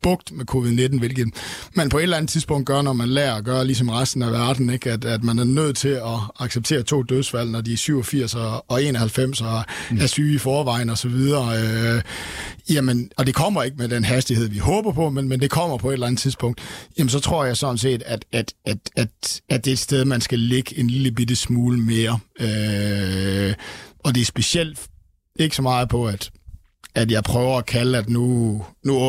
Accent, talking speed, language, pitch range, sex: native, 215 wpm, Danish, 115-135 Hz, male